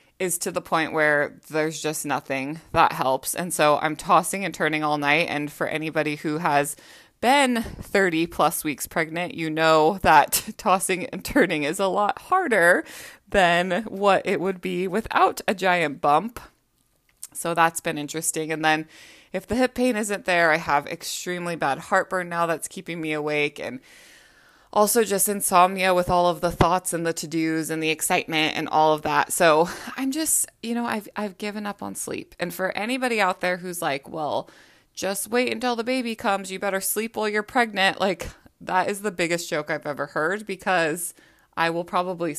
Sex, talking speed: female, 185 wpm